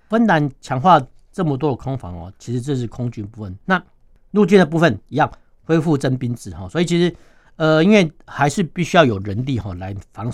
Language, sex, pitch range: Chinese, male, 105-145 Hz